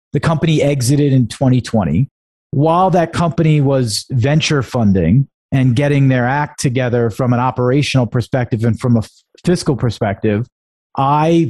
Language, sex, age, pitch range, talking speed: English, male, 40-59, 125-155 Hz, 135 wpm